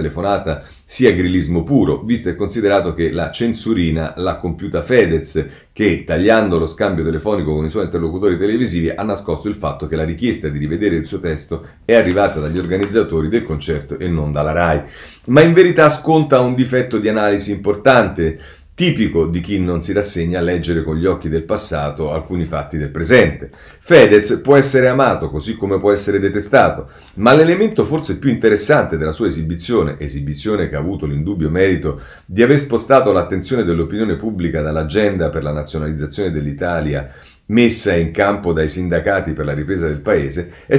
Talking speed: 170 wpm